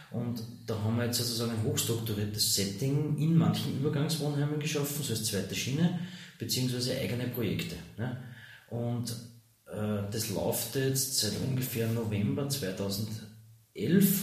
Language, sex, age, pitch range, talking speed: German, male, 30-49, 110-140 Hz, 120 wpm